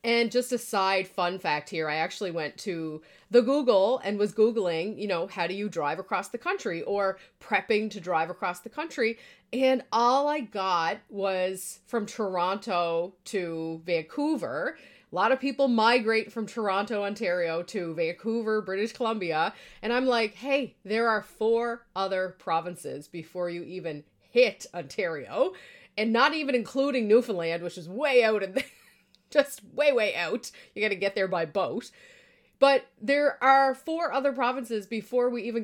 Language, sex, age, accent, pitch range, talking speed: English, female, 30-49, American, 190-245 Hz, 165 wpm